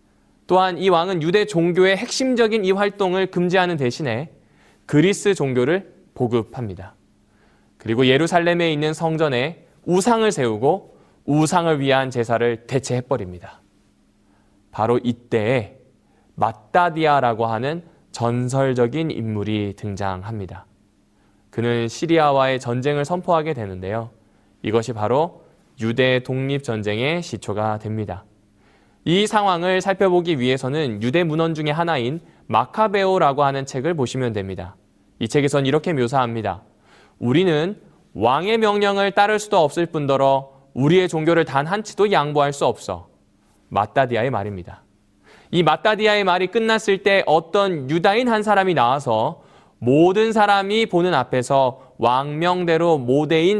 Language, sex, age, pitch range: Korean, male, 20-39, 115-175 Hz